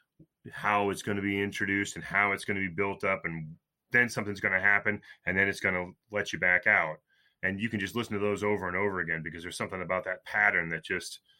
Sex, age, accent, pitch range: male, 30-49, American, 95-115 Hz